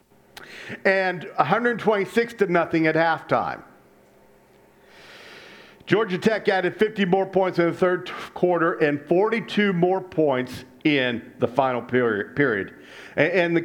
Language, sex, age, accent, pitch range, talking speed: English, male, 50-69, American, 135-190 Hz, 125 wpm